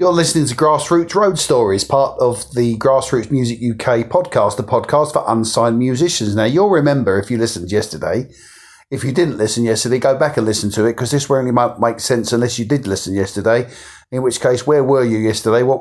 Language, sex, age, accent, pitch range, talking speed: English, male, 40-59, British, 115-145 Hz, 215 wpm